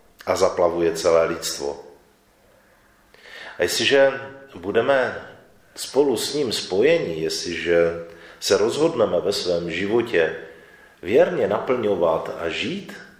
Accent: native